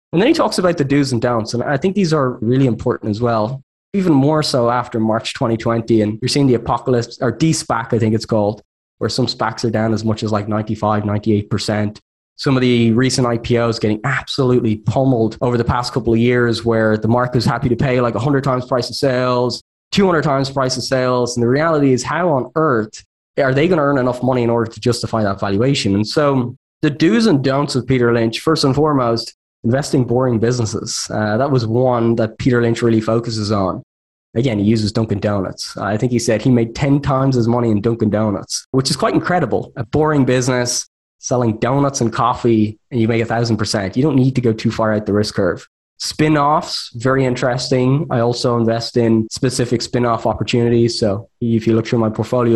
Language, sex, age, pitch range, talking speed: English, male, 20-39, 110-130 Hz, 215 wpm